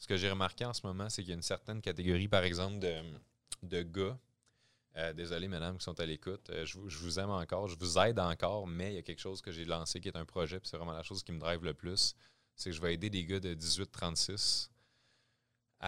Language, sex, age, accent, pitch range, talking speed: French, male, 30-49, Canadian, 80-105 Hz, 255 wpm